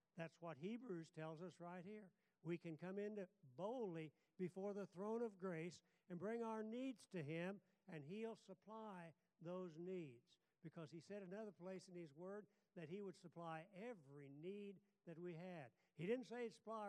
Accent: American